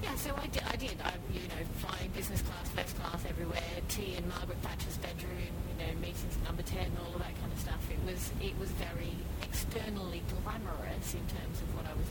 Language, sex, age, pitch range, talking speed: English, female, 30-49, 80-95 Hz, 230 wpm